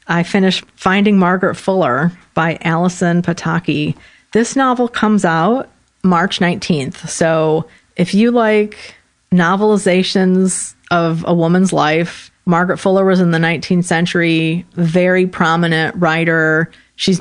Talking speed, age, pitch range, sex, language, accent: 120 wpm, 40-59, 165-185 Hz, female, English, American